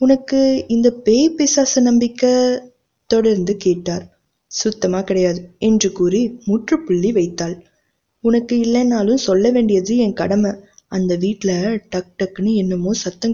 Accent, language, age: native, Tamil, 20-39